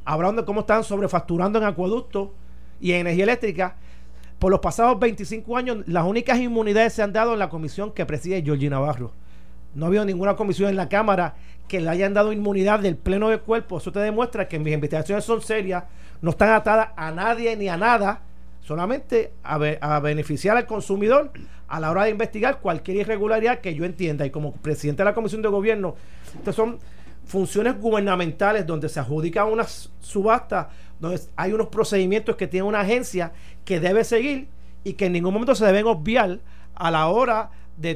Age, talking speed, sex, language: 40-59, 190 wpm, male, Spanish